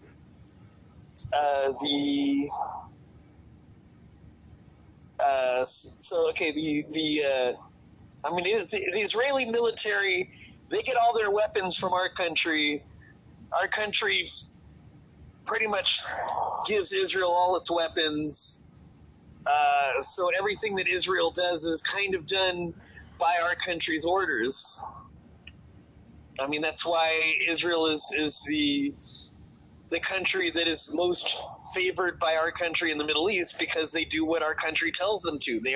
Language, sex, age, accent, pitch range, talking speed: English, male, 30-49, American, 150-195 Hz, 130 wpm